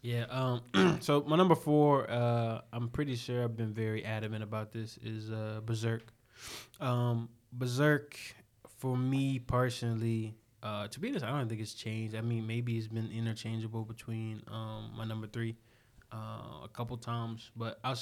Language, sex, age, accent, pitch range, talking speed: English, male, 20-39, American, 110-125 Hz, 165 wpm